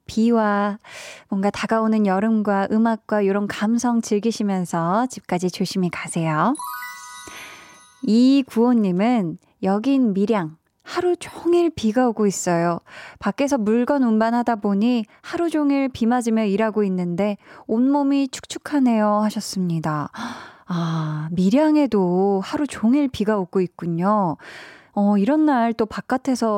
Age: 20-39